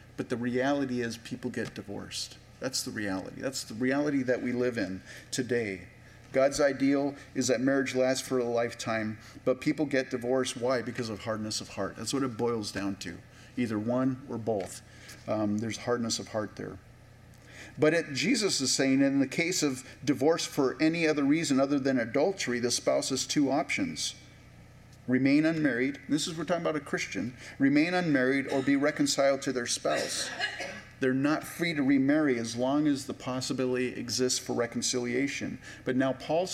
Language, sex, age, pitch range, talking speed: English, male, 40-59, 120-145 Hz, 175 wpm